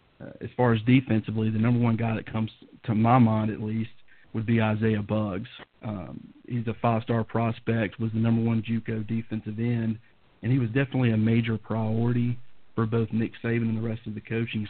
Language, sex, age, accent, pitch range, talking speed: English, male, 40-59, American, 110-115 Hz, 200 wpm